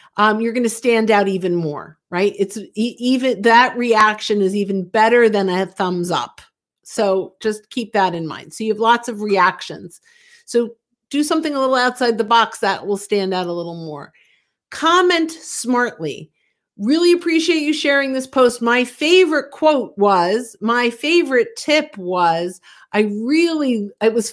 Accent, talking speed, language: American, 165 wpm, English